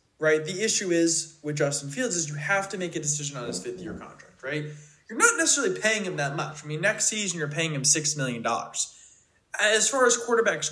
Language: English